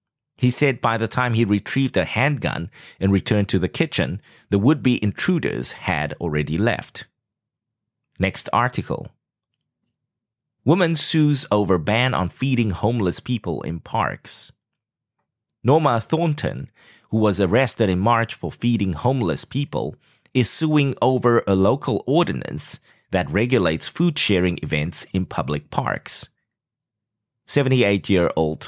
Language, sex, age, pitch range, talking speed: English, male, 30-49, 95-130 Hz, 120 wpm